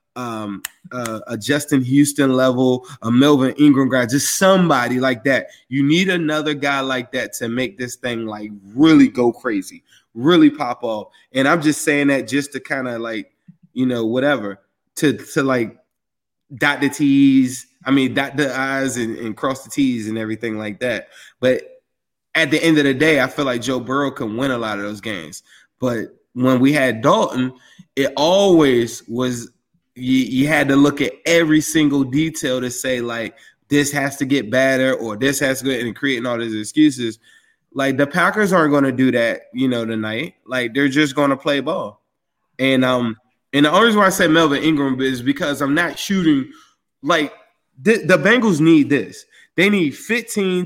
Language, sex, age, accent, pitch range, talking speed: English, male, 20-39, American, 125-155 Hz, 190 wpm